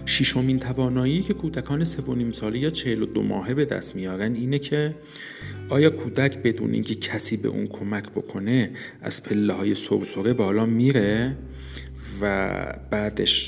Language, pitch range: Persian, 90-130 Hz